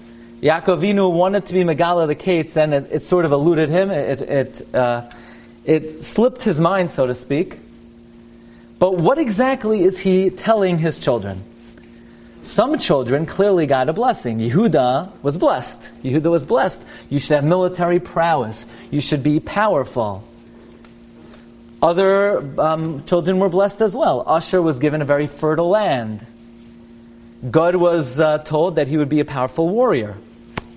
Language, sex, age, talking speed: English, male, 40-59, 150 wpm